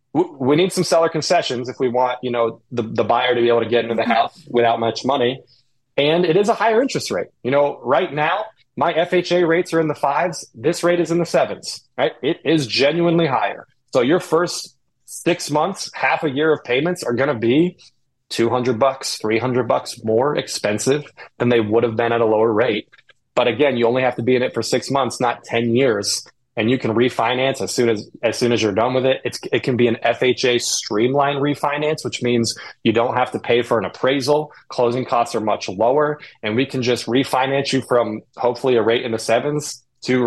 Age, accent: 30-49, American